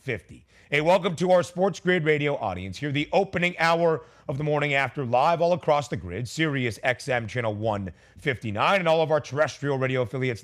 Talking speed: 190 wpm